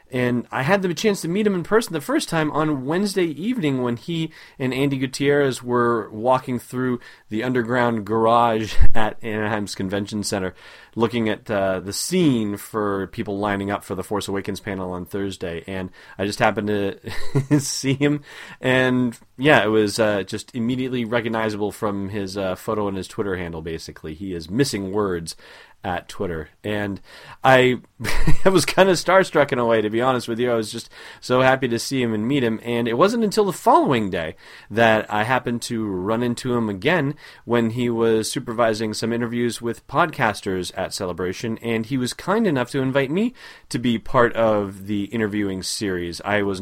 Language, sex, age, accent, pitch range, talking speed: English, male, 30-49, American, 100-130 Hz, 185 wpm